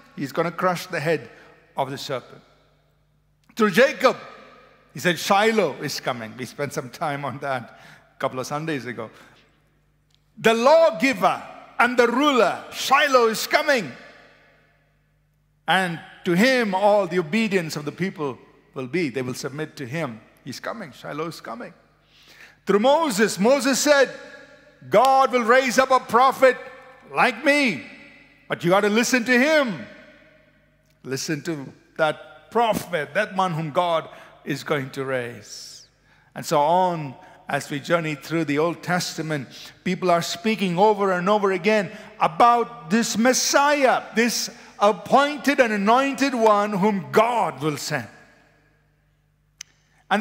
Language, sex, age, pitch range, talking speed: English, male, 50-69, 150-245 Hz, 140 wpm